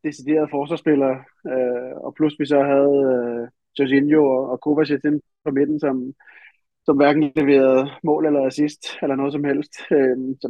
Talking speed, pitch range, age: 125 wpm, 135-160 Hz, 20-39